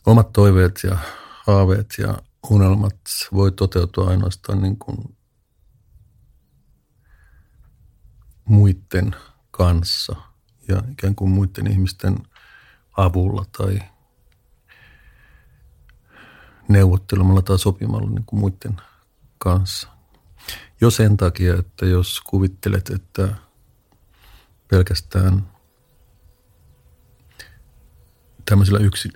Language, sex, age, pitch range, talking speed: Finnish, male, 50-69, 90-105 Hz, 65 wpm